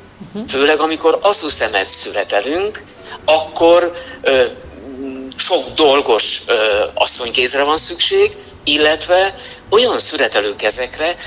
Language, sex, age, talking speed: Hungarian, male, 60-79, 80 wpm